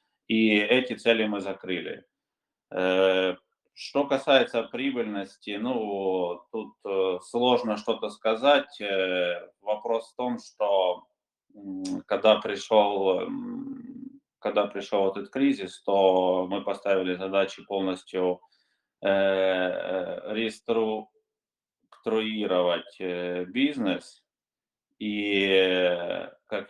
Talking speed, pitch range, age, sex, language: 70 wpm, 95-115 Hz, 20-39, male, Ukrainian